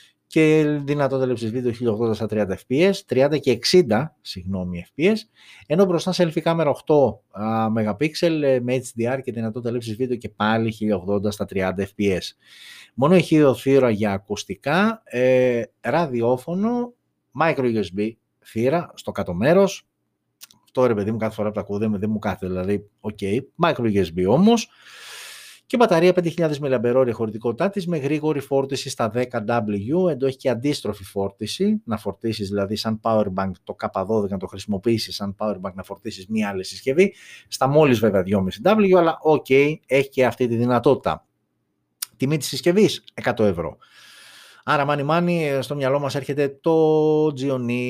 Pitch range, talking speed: 105-150 Hz, 150 wpm